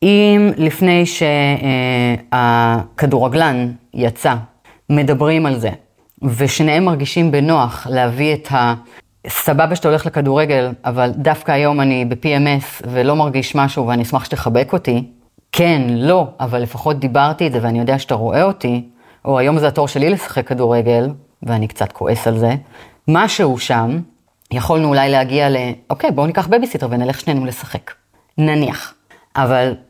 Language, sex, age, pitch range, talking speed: Hebrew, female, 30-49, 125-175 Hz, 135 wpm